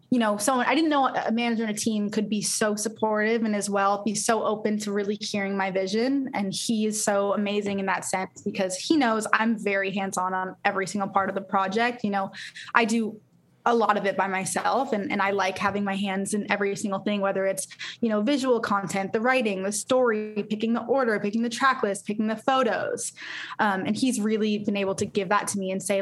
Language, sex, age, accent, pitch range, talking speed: English, female, 20-39, American, 195-225 Hz, 235 wpm